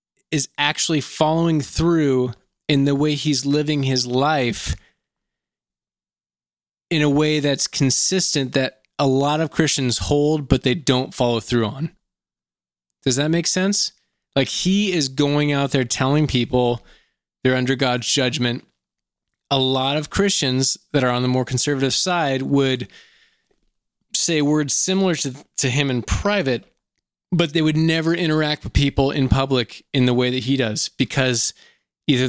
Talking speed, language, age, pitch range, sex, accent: 150 wpm, English, 20-39, 130-155 Hz, male, American